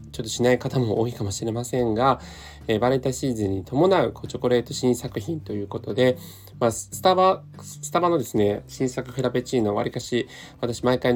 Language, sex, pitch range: Japanese, male, 110-145 Hz